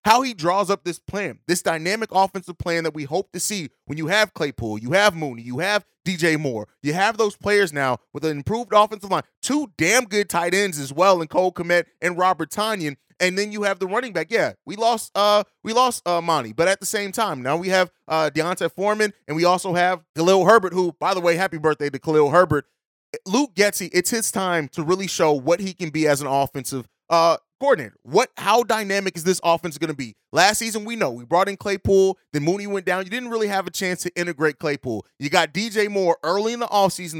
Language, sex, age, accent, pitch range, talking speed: English, male, 30-49, American, 160-200 Hz, 230 wpm